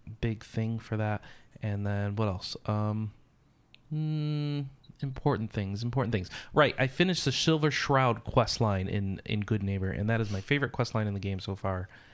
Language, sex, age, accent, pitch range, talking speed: English, male, 30-49, American, 100-130 Hz, 185 wpm